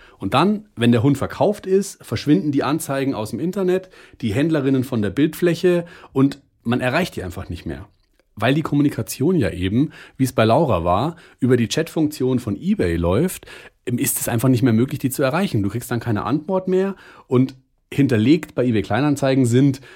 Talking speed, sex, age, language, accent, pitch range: 185 wpm, male, 40-59, German, German, 105-145 Hz